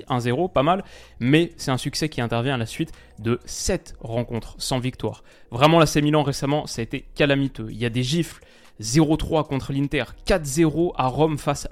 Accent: French